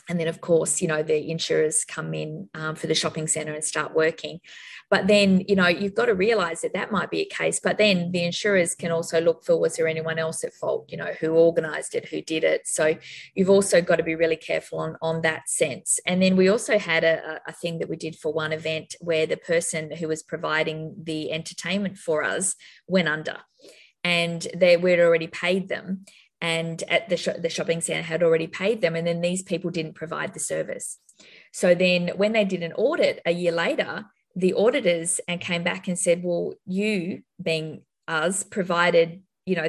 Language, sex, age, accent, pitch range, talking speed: English, female, 20-39, Australian, 160-190 Hz, 210 wpm